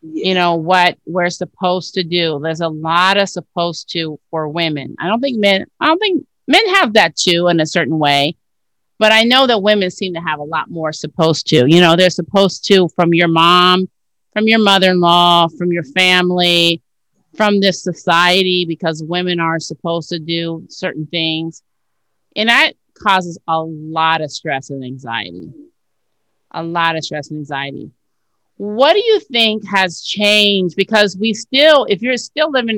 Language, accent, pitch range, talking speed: English, American, 165-210 Hz, 175 wpm